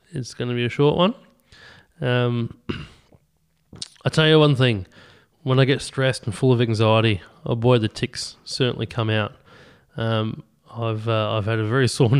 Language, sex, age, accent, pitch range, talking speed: English, male, 20-39, Australian, 115-150 Hz, 175 wpm